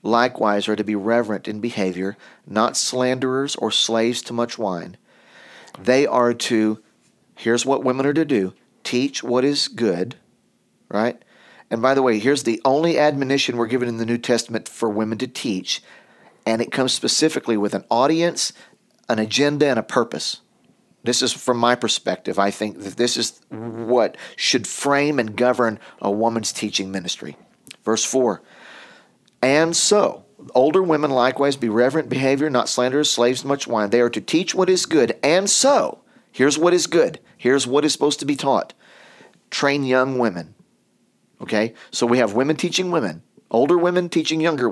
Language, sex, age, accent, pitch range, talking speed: English, male, 40-59, American, 110-140 Hz, 170 wpm